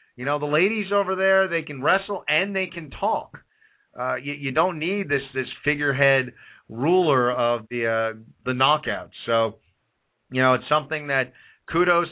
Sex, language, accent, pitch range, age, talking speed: male, English, American, 115-150 Hz, 40-59, 170 wpm